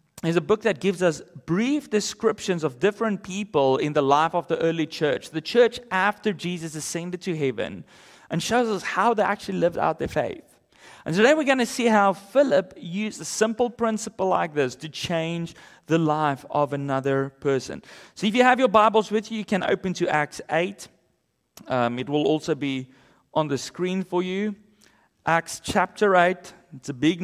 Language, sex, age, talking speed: English, male, 30-49, 190 wpm